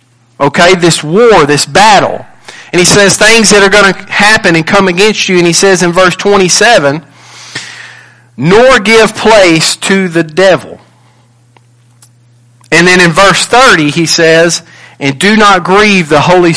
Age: 40-59